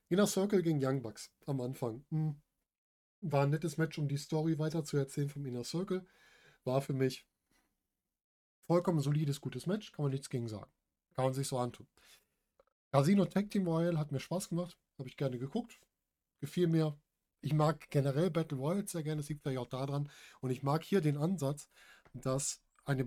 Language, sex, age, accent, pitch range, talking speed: German, male, 10-29, German, 130-160 Hz, 185 wpm